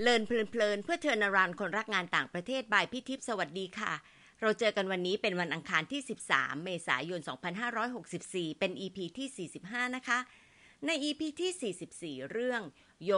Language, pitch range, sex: Thai, 185-255 Hz, female